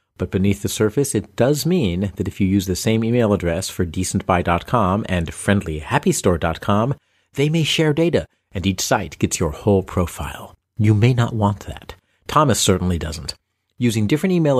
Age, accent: 50-69, American